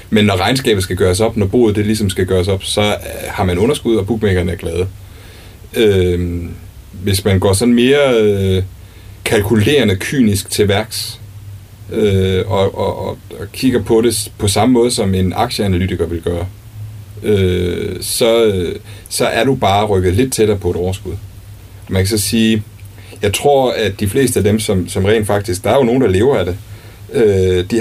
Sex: male